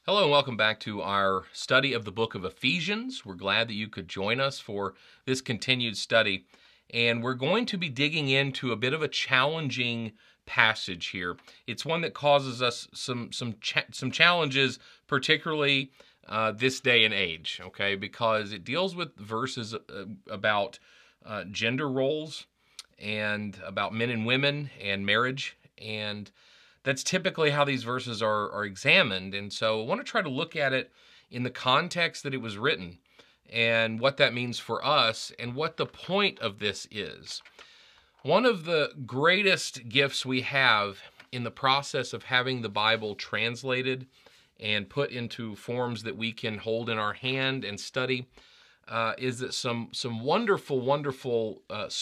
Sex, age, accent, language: male, 30-49, American, English